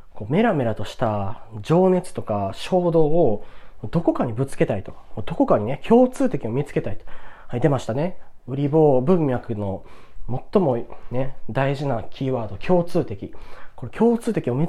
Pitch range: 115-195 Hz